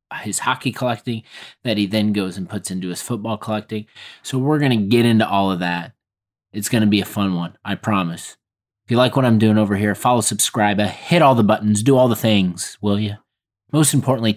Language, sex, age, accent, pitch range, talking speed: English, male, 30-49, American, 95-115 Hz, 220 wpm